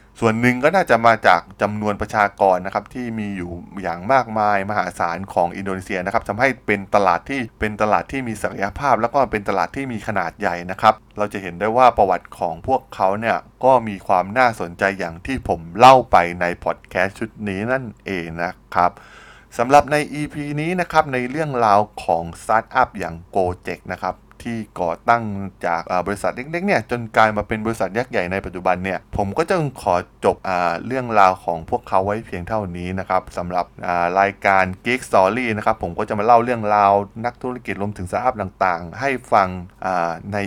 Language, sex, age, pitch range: Thai, male, 20-39, 95-115 Hz